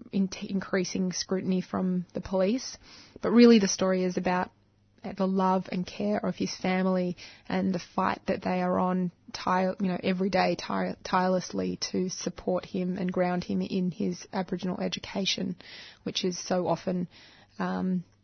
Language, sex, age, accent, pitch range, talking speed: English, female, 20-39, Australian, 180-195 Hz, 160 wpm